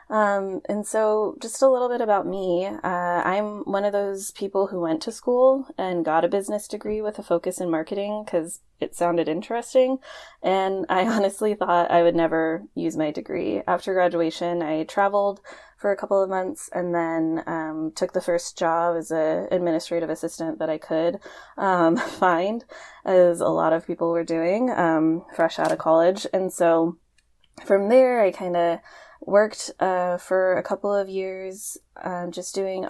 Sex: female